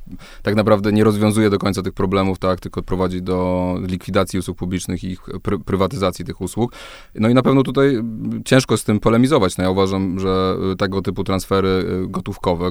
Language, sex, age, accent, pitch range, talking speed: Polish, male, 20-39, native, 90-100 Hz, 180 wpm